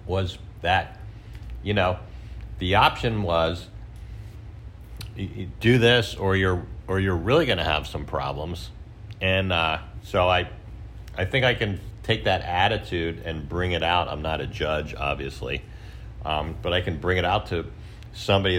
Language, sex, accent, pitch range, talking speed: English, male, American, 85-105 Hz, 155 wpm